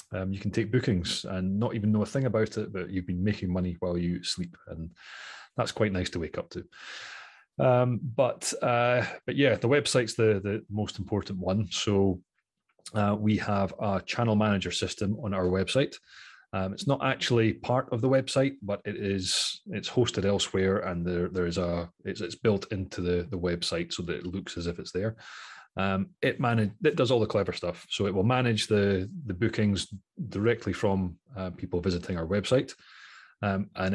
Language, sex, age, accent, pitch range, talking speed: English, male, 30-49, British, 90-110 Hz, 195 wpm